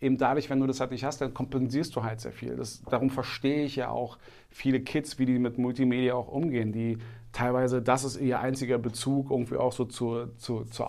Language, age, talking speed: German, 40-59, 225 wpm